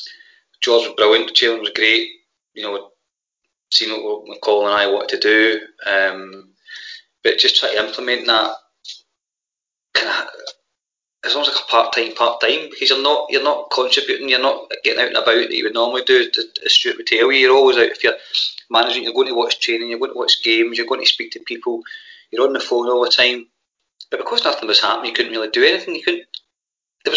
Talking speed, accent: 210 wpm, British